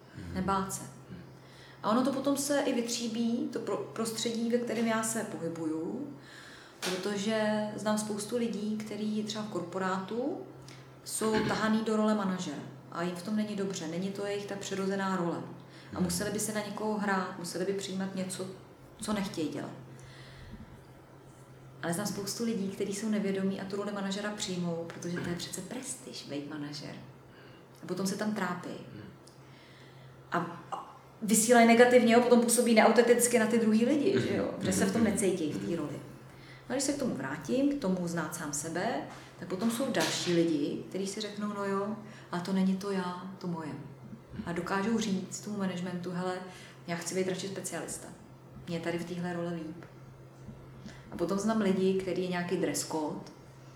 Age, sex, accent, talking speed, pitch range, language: 30-49, female, native, 170 wpm, 175-220 Hz, Czech